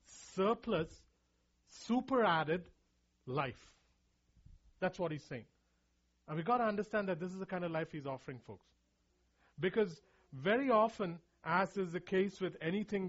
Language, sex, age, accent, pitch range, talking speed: English, male, 40-59, Indian, 135-200 Hz, 140 wpm